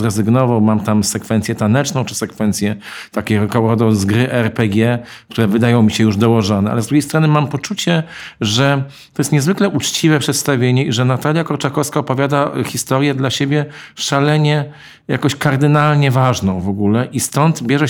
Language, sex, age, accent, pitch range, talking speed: Polish, male, 50-69, native, 115-140 Hz, 150 wpm